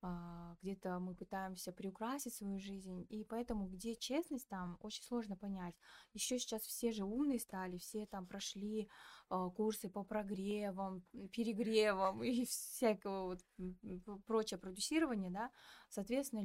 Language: Russian